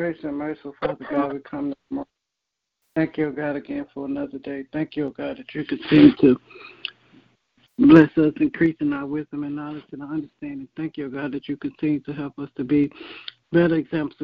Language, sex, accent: English, male, American